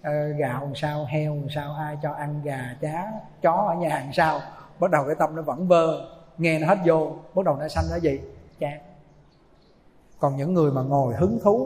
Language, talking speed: Vietnamese, 200 wpm